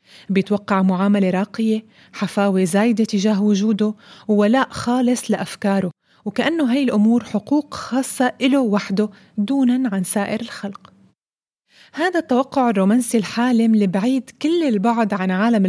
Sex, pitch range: female, 200-250 Hz